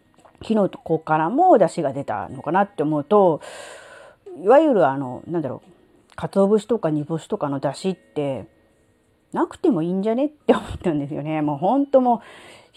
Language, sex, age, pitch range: Japanese, female, 40-59, 160-270 Hz